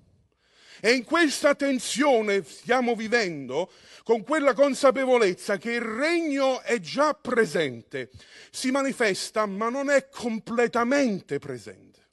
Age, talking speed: 40-59, 110 wpm